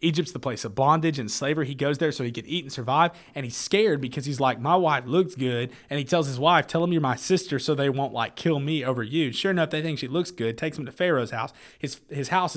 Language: English